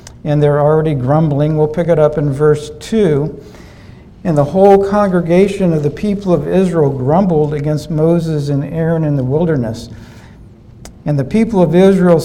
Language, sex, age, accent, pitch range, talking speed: English, male, 60-79, American, 140-165 Hz, 160 wpm